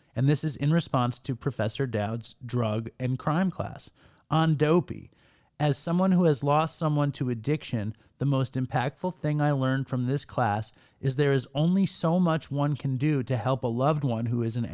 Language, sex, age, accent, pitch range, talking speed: English, male, 40-59, American, 125-155 Hz, 195 wpm